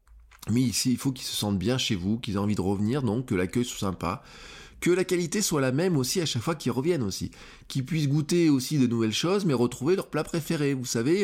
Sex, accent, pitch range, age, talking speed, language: male, French, 105-140 Hz, 20-39, 250 wpm, French